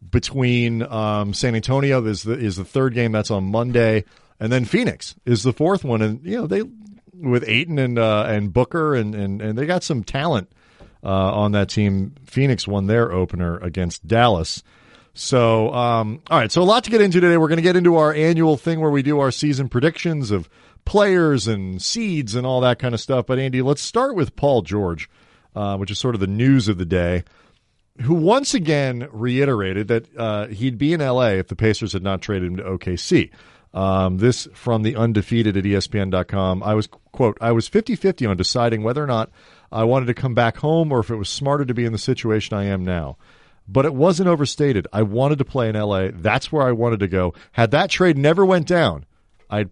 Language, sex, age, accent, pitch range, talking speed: English, male, 40-59, American, 100-135 Hz, 215 wpm